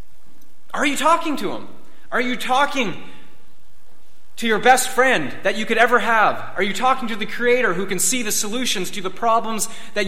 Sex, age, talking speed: male, 30-49, 190 wpm